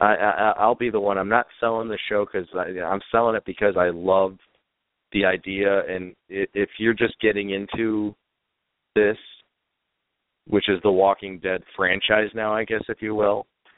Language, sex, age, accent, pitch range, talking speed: English, male, 40-59, American, 95-110 Hz, 175 wpm